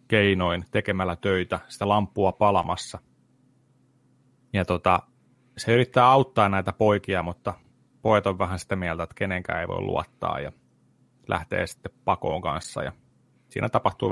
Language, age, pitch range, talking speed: Finnish, 30-49, 95-125 Hz, 135 wpm